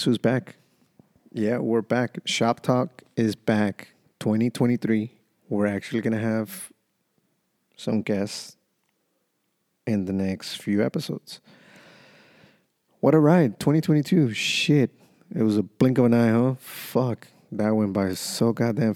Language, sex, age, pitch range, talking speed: English, male, 30-49, 105-120 Hz, 125 wpm